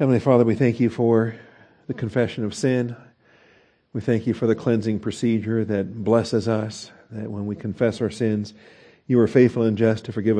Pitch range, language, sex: 110-135 Hz, English, male